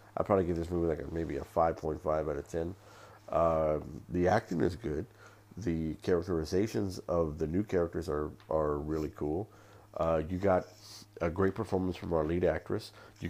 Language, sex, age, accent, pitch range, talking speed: English, male, 50-69, American, 85-105 Hz, 175 wpm